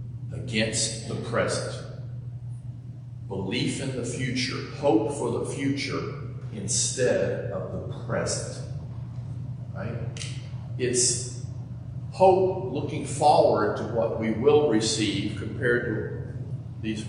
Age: 40-59